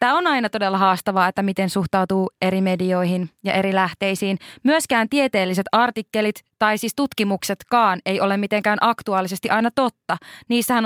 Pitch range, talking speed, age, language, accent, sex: 195-245 Hz, 145 wpm, 20-39, Finnish, native, female